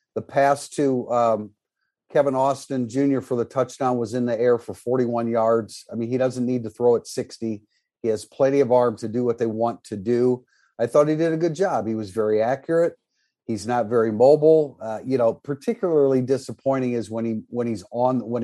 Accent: American